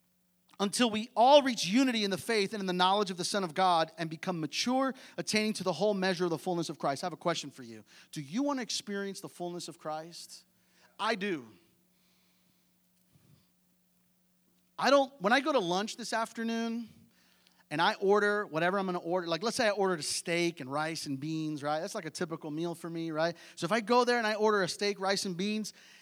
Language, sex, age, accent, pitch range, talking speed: English, male, 30-49, American, 180-230 Hz, 225 wpm